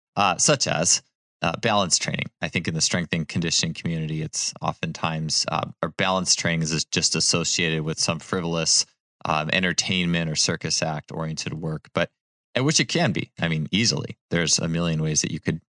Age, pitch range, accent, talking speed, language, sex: 20-39, 80-95 Hz, American, 185 wpm, English, male